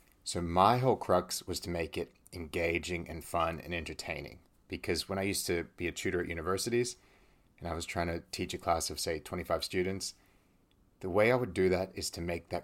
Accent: American